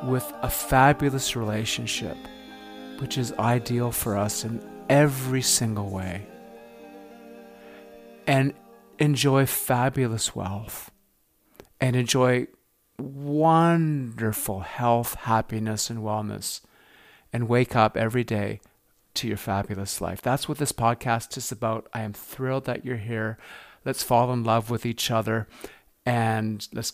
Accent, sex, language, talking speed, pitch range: American, male, English, 120 wpm, 110-135 Hz